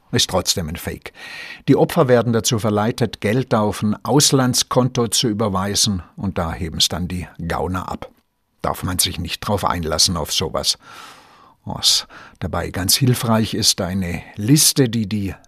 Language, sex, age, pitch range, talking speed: German, male, 60-79, 95-120 Hz, 155 wpm